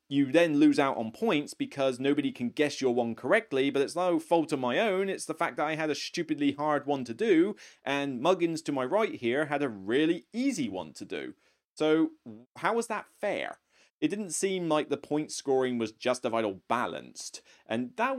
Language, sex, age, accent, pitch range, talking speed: English, male, 30-49, British, 110-165 Hz, 210 wpm